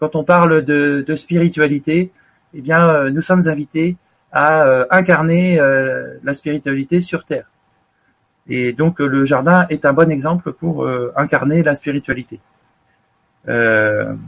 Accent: French